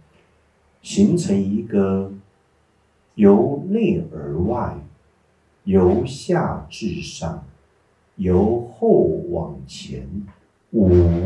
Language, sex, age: Chinese, male, 50-69